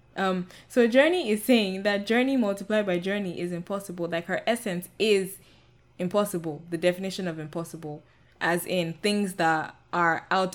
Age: 10-29